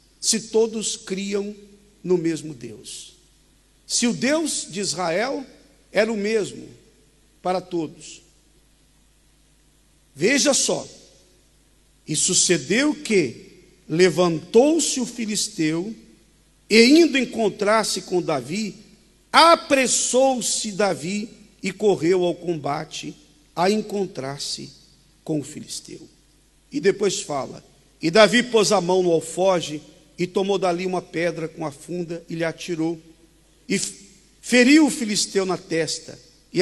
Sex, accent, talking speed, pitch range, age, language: male, Brazilian, 110 wpm, 165-215 Hz, 50-69, Portuguese